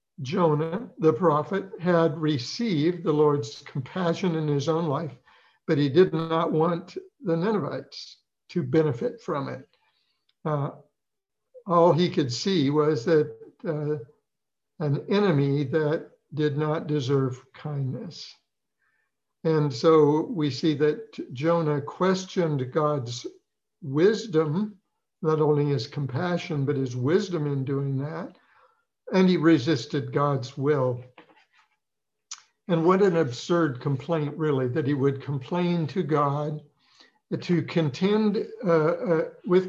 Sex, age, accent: male, 60-79, American